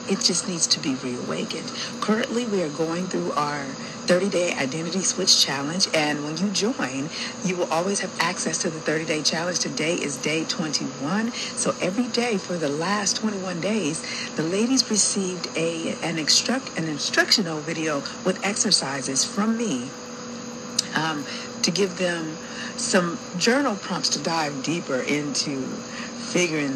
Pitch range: 170-245 Hz